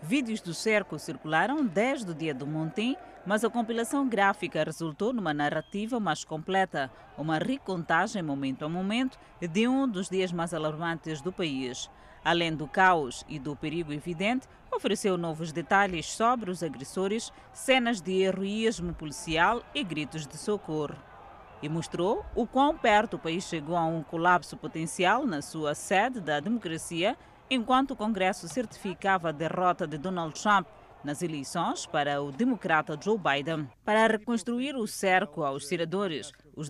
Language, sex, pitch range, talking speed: Portuguese, female, 160-220 Hz, 150 wpm